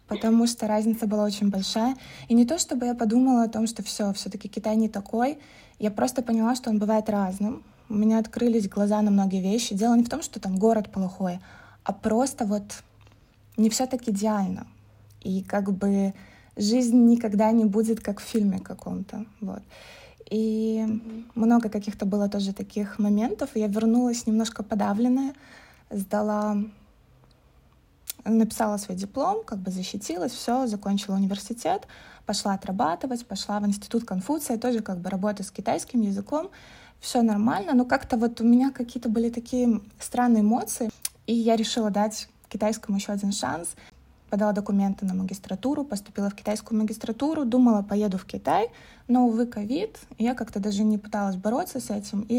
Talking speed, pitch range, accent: 160 wpm, 205-235 Hz, native